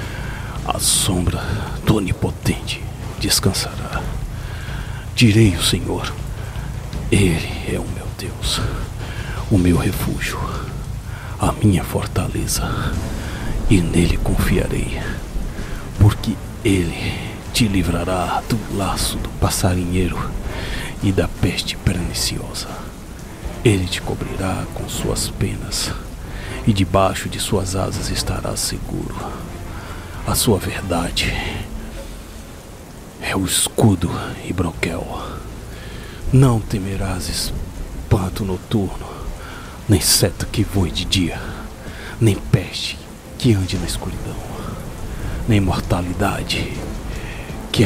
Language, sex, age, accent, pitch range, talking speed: Portuguese, male, 60-79, Brazilian, 90-110 Hz, 95 wpm